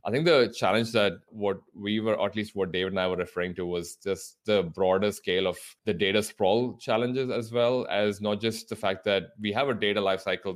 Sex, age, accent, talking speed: male, 20-39, Indian, 235 wpm